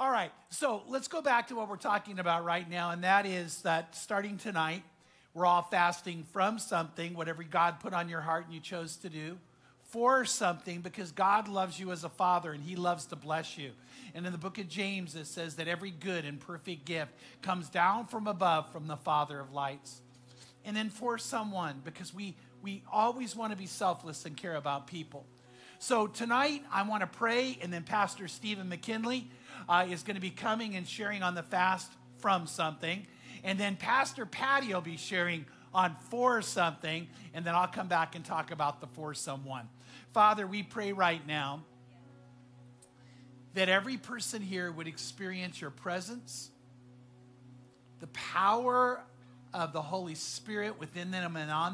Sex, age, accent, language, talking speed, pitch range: male, 50-69, American, English, 180 wpm, 150-200 Hz